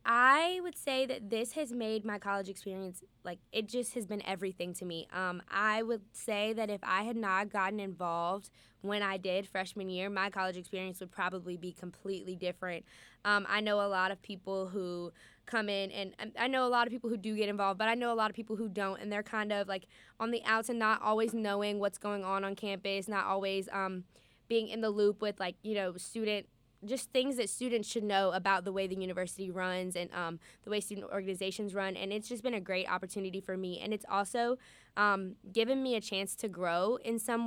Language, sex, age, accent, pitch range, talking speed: English, female, 10-29, American, 190-220 Hz, 225 wpm